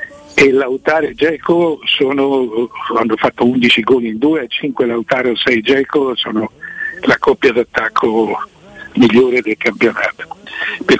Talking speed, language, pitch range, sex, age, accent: 135 wpm, Italian, 120-170 Hz, male, 60-79, native